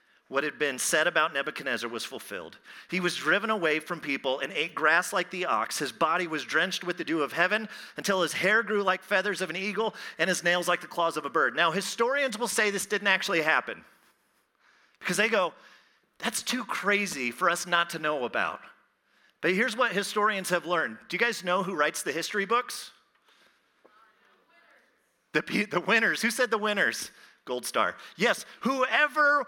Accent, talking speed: American, 195 wpm